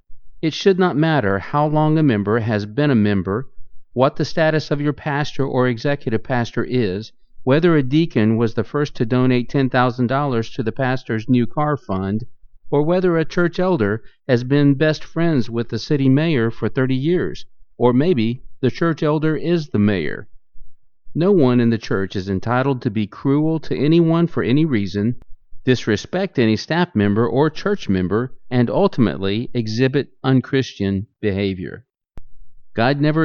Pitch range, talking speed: 110-145 Hz, 160 wpm